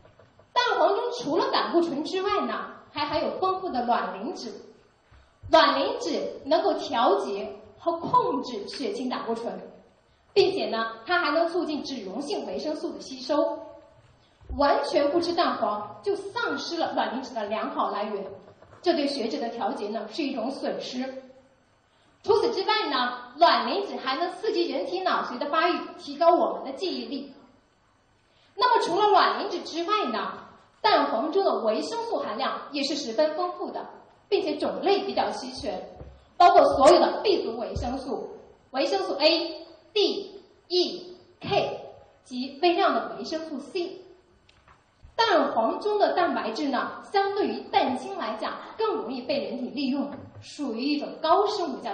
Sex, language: female, Chinese